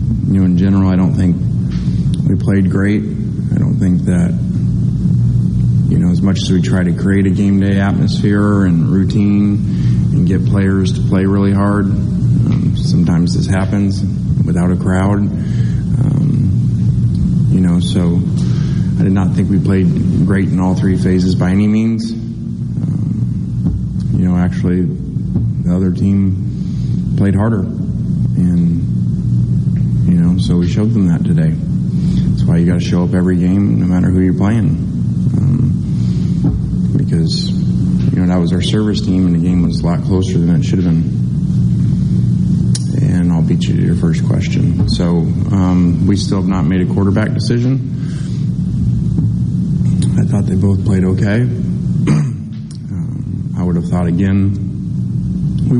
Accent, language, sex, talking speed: American, English, male, 155 wpm